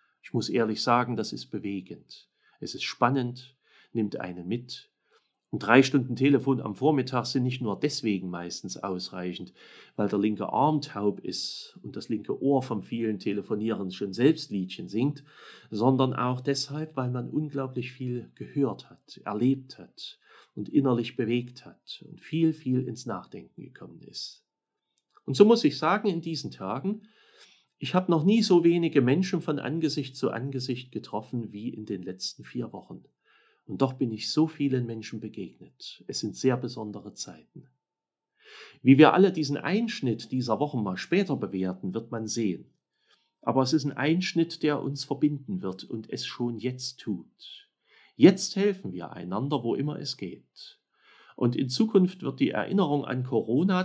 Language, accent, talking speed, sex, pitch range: German, German, 165 wpm, male, 110-150 Hz